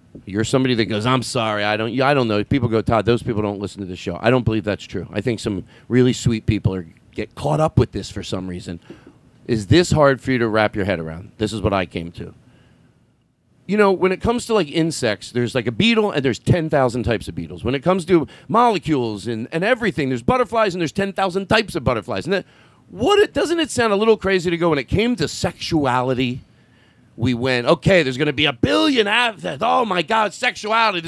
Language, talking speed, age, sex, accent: English, 235 wpm, 40-59, male, American